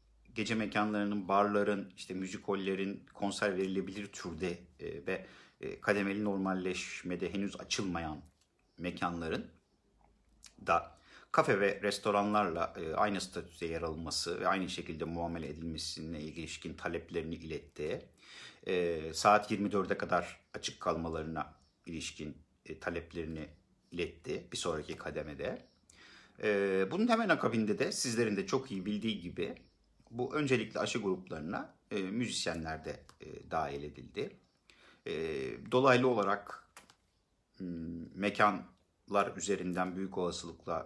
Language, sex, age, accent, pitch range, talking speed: Turkish, male, 50-69, native, 85-105 Hz, 95 wpm